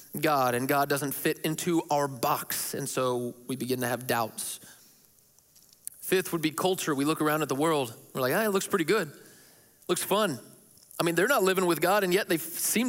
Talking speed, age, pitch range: 210 wpm, 30-49, 130-180 Hz